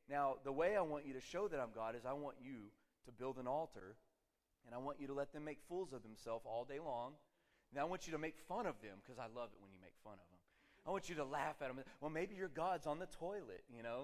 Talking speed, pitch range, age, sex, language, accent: 290 wpm, 125-170 Hz, 30-49, male, English, American